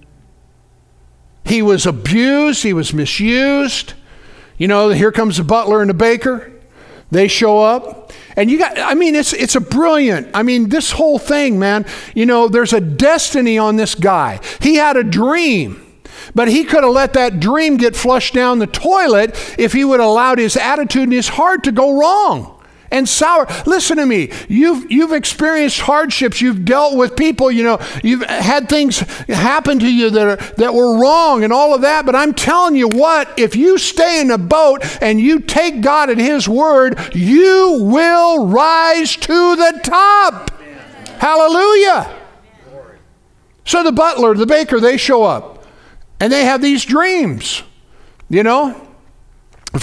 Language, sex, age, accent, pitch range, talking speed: English, male, 50-69, American, 215-300 Hz, 170 wpm